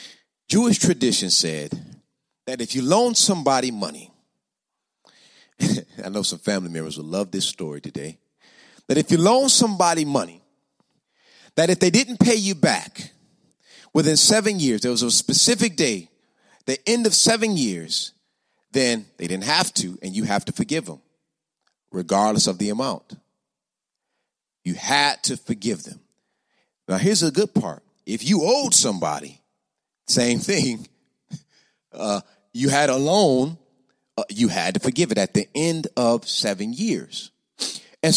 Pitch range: 145-220 Hz